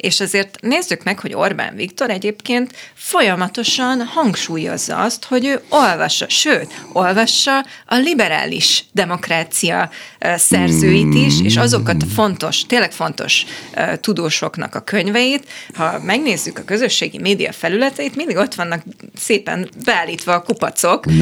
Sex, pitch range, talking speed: female, 175-245 Hz, 120 wpm